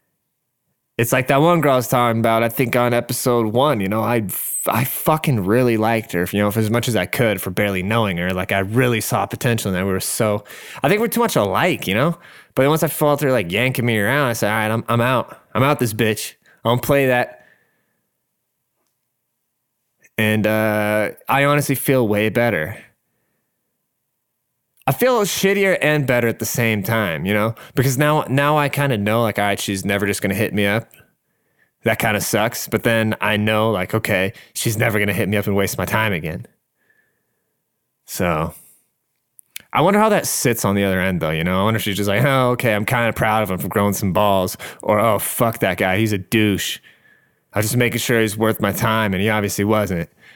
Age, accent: 20-39, American